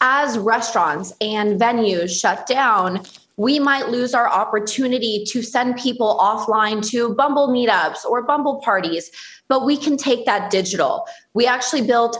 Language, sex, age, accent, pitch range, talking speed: English, female, 20-39, American, 200-255 Hz, 150 wpm